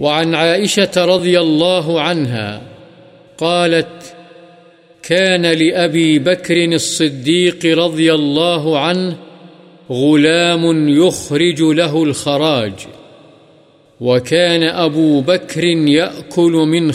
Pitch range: 155-175 Hz